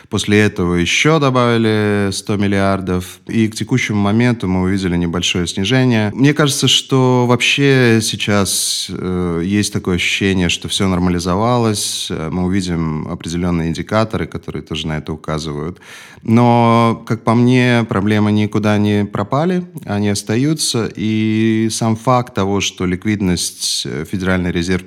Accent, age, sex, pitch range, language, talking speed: native, 30-49, male, 90-110 Hz, Russian, 130 wpm